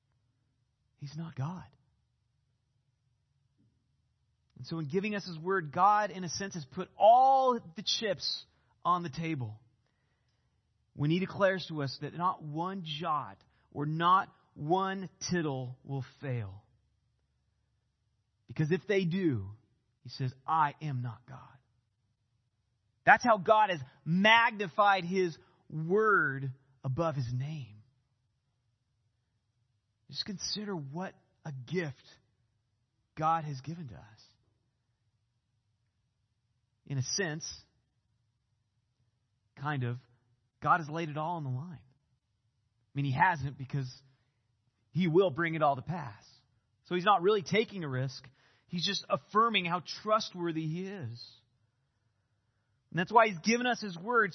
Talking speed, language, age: 125 wpm, English, 30-49